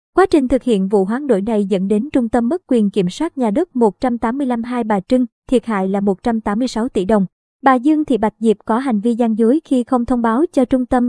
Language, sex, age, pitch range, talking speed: Vietnamese, male, 20-39, 215-265 Hz, 240 wpm